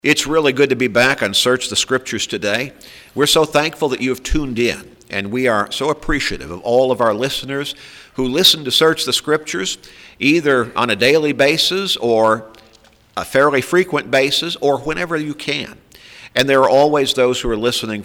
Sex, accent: male, American